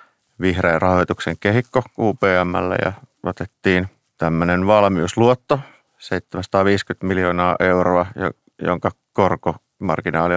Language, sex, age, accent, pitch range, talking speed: Finnish, male, 30-49, native, 85-100 Hz, 75 wpm